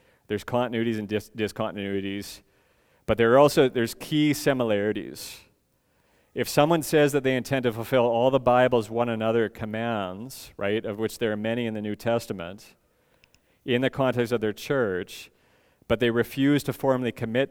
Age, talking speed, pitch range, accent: 40-59, 160 wpm, 105-125 Hz, American